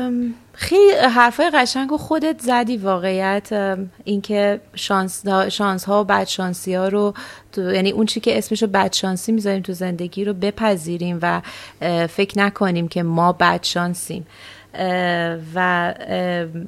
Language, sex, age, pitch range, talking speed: Persian, female, 30-49, 180-210 Hz, 125 wpm